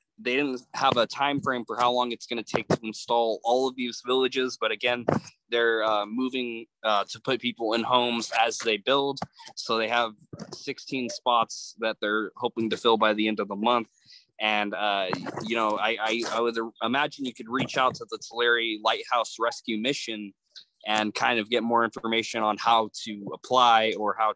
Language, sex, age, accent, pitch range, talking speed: English, male, 20-39, American, 110-130 Hz, 195 wpm